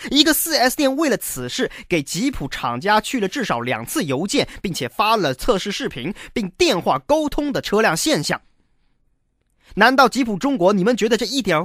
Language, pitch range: Chinese, 210-305 Hz